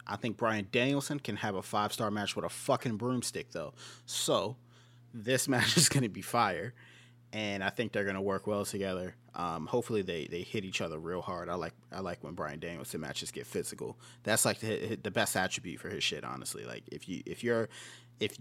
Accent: American